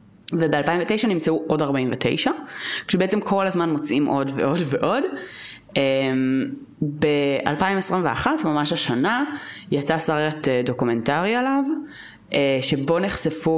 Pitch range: 130-170 Hz